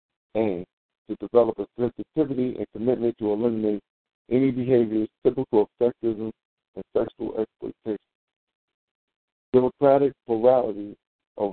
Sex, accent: male, American